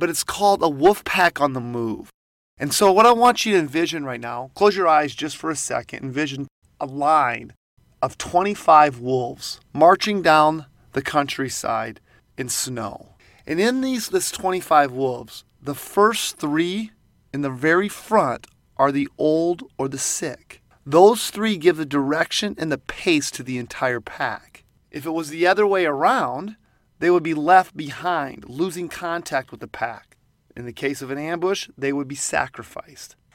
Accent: American